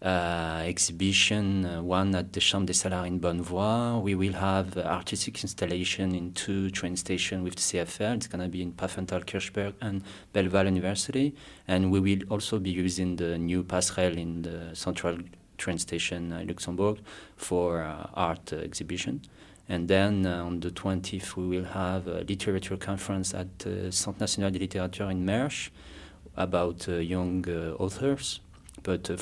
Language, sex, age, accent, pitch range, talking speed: English, male, 30-49, French, 90-95 Hz, 170 wpm